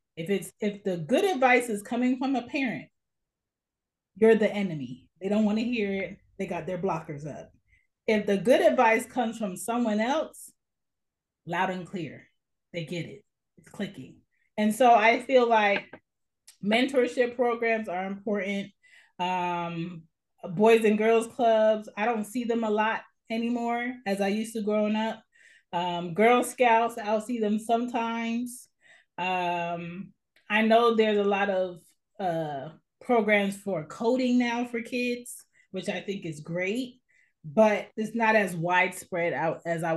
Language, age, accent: English, 30-49, American